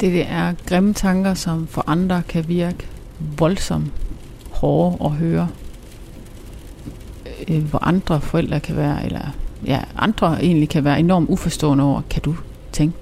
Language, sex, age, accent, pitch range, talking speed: Danish, female, 30-49, native, 145-190 Hz, 135 wpm